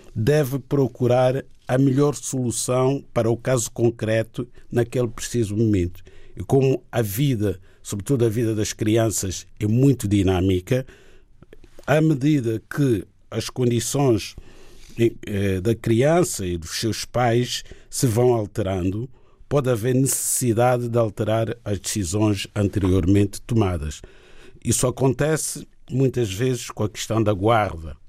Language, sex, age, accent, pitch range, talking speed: Portuguese, male, 50-69, Brazilian, 105-130 Hz, 120 wpm